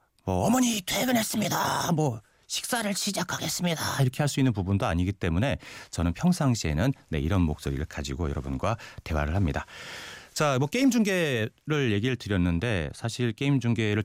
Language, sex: Korean, male